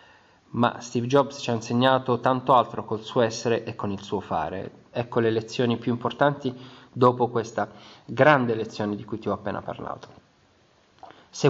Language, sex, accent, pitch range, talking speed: Italian, male, native, 110-140 Hz, 165 wpm